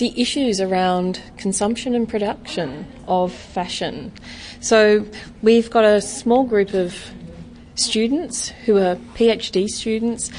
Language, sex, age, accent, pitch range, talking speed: English, female, 30-49, Australian, 185-230 Hz, 115 wpm